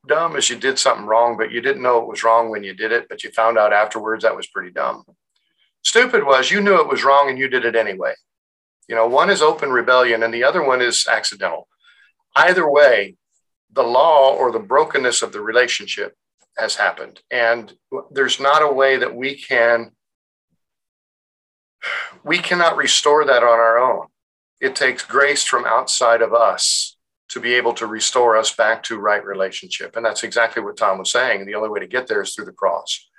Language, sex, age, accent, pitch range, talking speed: English, male, 50-69, American, 115-140 Hz, 200 wpm